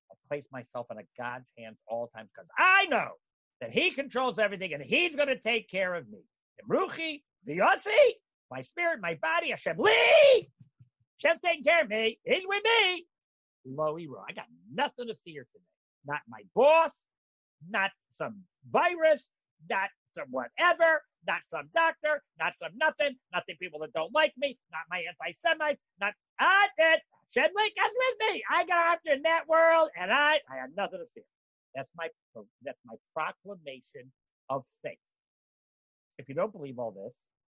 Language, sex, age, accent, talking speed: English, male, 50-69, American, 170 wpm